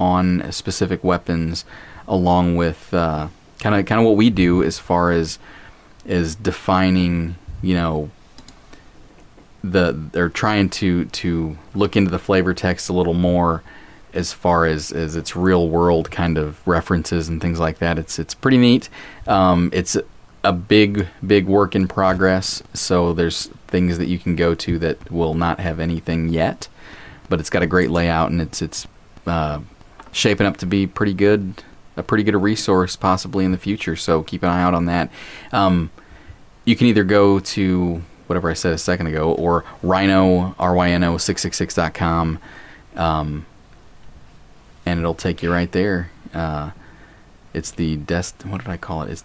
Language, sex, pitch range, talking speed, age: English, male, 85-95 Hz, 175 wpm, 30-49